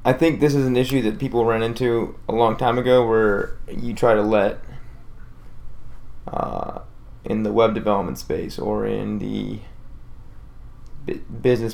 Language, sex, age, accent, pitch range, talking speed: English, male, 20-39, American, 105-120 Hz, 150 wpm